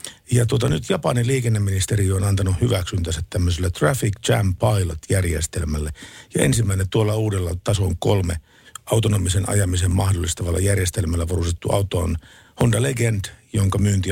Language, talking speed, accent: Finnish, 125 wpm, native